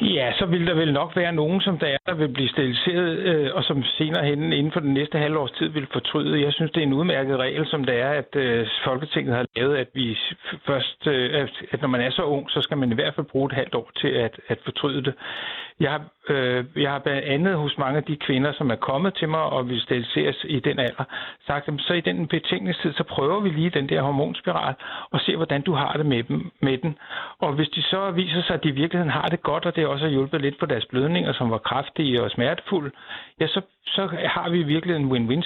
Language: Danish